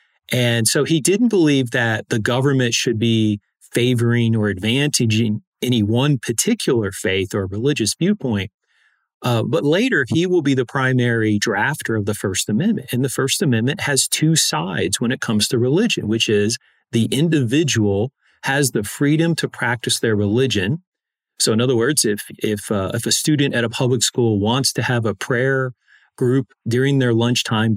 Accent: American